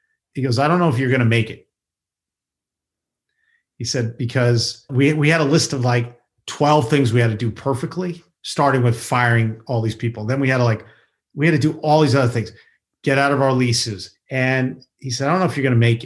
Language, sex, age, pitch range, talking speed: English, male, 40-59, 115-140 Hz, 235 wpm